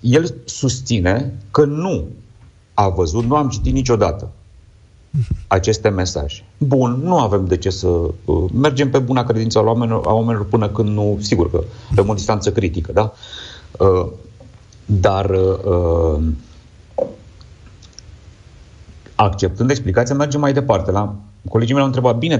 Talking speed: 135 wpm